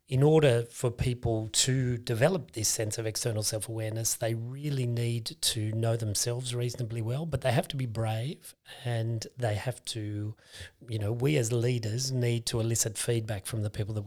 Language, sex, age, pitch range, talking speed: English, male, 30-49, 110-130 Hz, 180 wpm